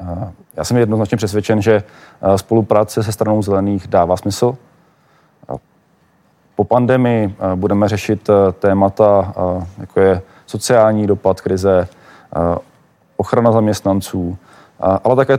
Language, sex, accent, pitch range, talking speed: Czech, male, native, 100-115 Hz, 100 wpm